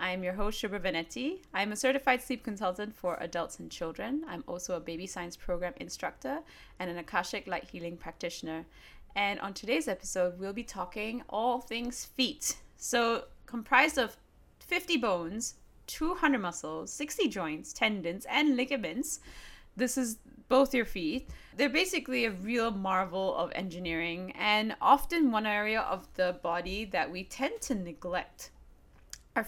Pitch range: 185-255 Hz